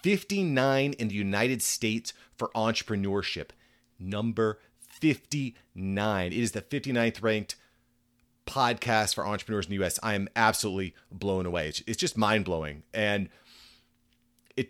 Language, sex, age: English, male, 30-49